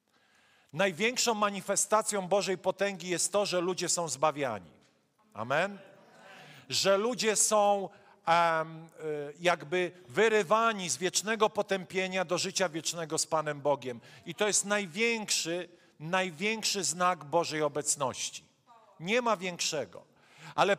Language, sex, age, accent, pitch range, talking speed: Polish, male, 40-59, native, 170-210 Hz, 105 wpm